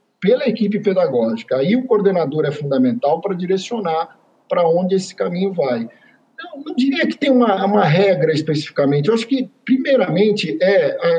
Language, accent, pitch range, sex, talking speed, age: Portuguese, Brazilian, 155-240 Hz, male, 155 wpm, 50-69